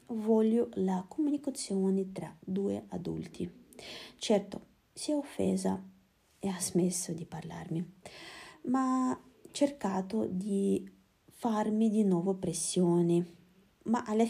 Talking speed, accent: 105 wpm, native